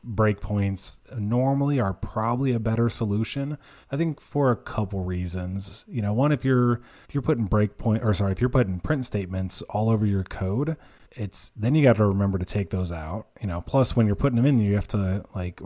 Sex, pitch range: male, 95-120 Hz